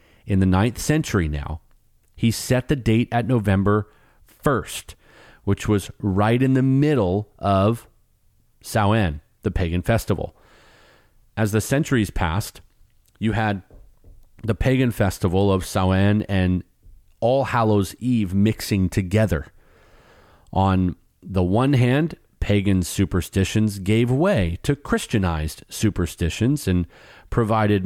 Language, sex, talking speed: English, male, 115 wpm